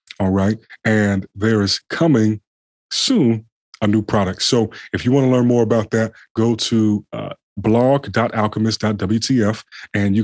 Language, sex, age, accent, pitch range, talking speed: English, male, 30-49, American, 100-120 Hz, 145 wpm